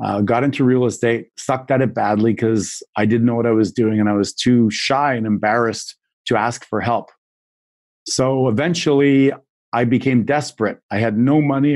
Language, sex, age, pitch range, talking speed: English, male, 40-59, 110-130 Hz, 190 wpm